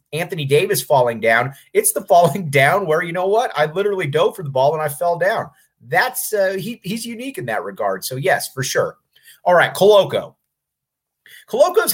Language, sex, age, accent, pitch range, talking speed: English, male, 30-49, American, 130-195 Hz, 190 wpm